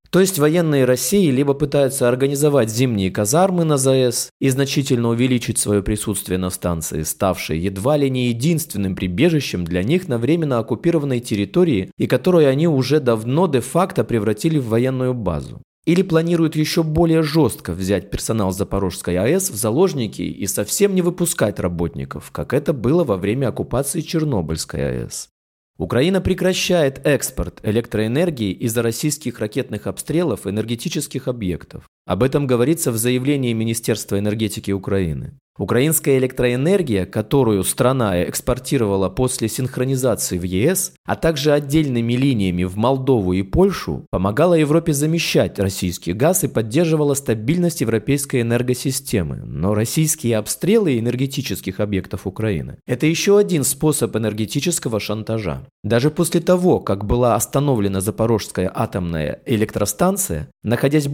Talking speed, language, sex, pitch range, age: 130 wpm, Russian, male, 105-155 Hz, 20-39